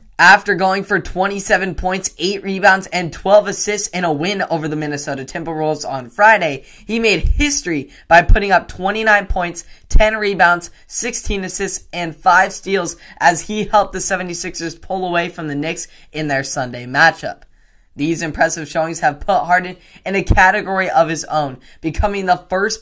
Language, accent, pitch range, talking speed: English, American, 150-190 Hz, 165 wpm